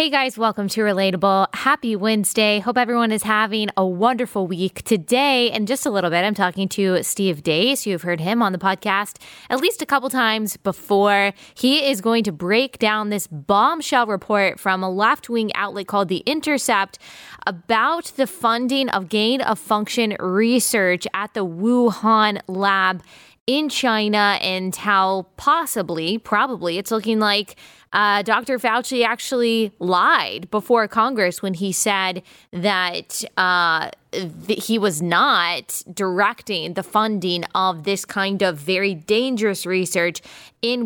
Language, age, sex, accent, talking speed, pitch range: English, 20-39, female, American, 145 wpm, 190-235 Hz